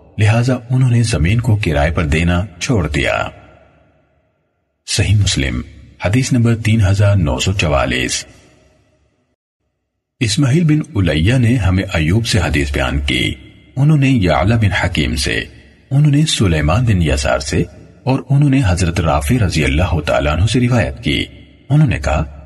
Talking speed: 140 wpm